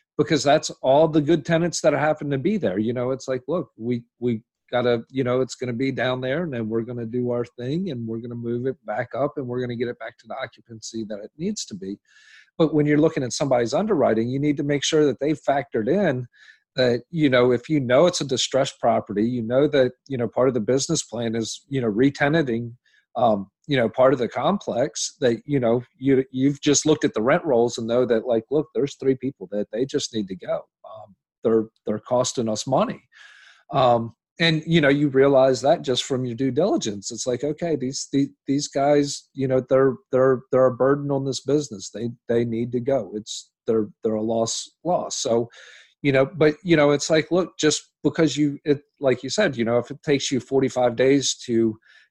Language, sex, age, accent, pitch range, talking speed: English, male, 40-59, American, 120-145 Hz, 235 wpm